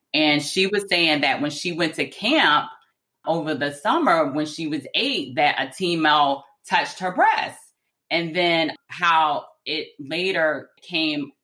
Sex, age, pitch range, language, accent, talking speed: female, 30-49, 135-175 Hz, English, American, 150 wpm